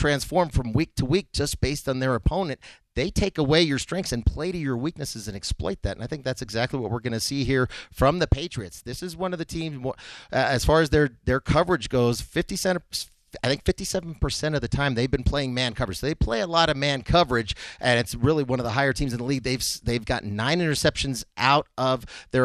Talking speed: 245 wpm